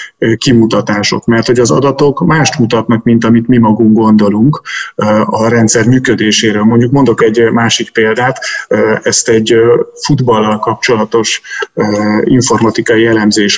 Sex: male